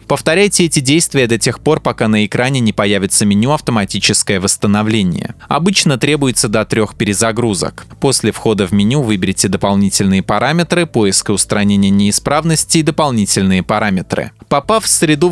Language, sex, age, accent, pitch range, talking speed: Russian, male, 20-39, native, 105-145 Hz, 135 wpm